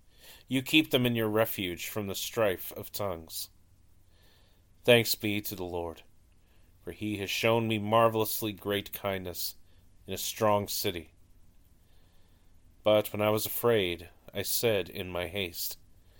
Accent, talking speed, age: American, 140 wpm, 40-59